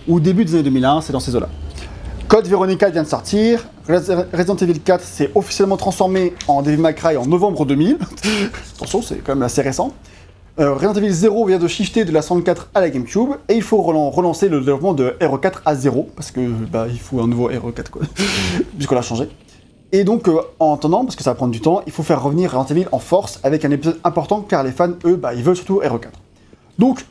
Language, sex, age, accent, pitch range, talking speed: French, male, 30-49, French, 135-190 Hz, 225 wpm